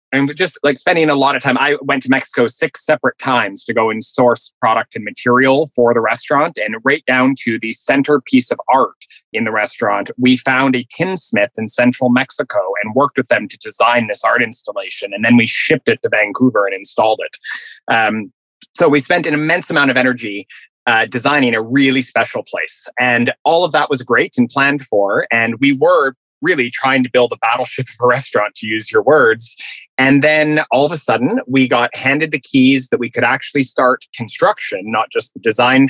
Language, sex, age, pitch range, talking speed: English, male, 30-49, 120-145 Hz, 205 wpm